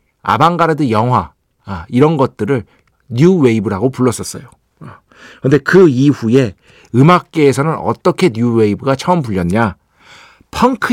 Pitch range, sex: 120-180 Hz, male